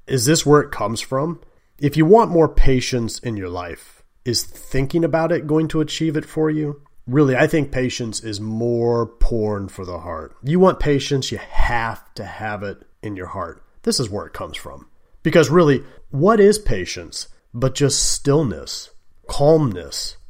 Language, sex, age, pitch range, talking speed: English, male, 30-49, 105-150 Hz, 175 wpm